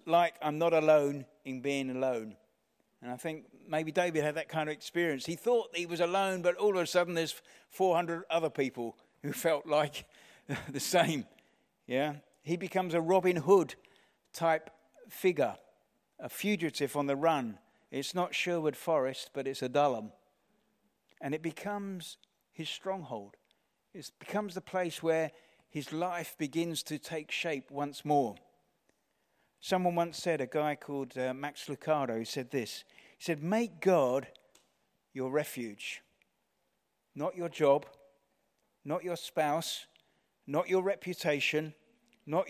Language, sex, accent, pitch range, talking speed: English, male, British, 140-170 Hz, 145 wpm